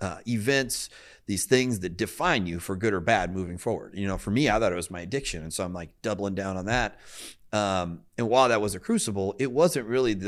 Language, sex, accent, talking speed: English, male, American, 240 wpm